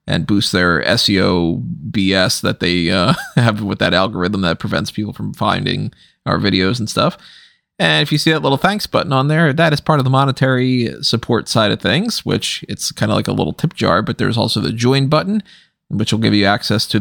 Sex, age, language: male, 30-49, English